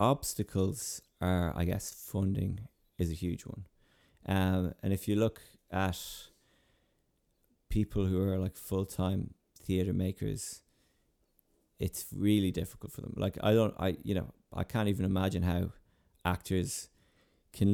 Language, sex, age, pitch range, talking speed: English, male, 20-39, 90-105 Hz, 135 wpm